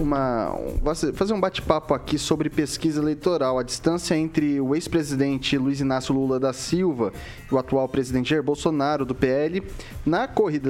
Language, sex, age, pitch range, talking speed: Portuguese, male, 10-29, 130-165 Hz, 150 wpm